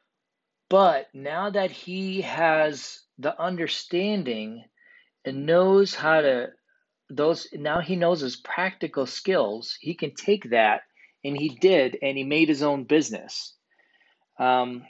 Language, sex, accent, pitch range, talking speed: English, male, American, 135-180 Hz, 130 wpm